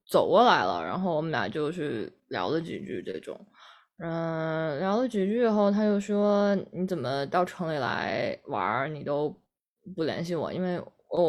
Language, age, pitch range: Chinese, 20-39, 175-230 Hz